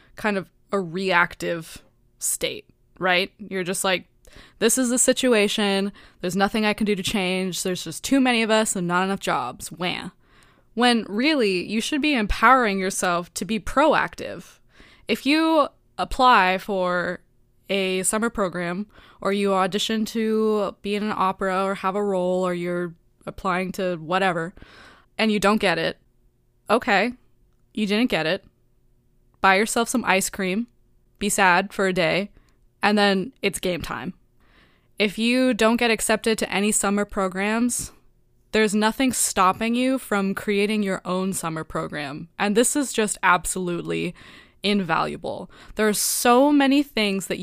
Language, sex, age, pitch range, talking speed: English, female, 20-39, 180-220 Hz, 155 wpm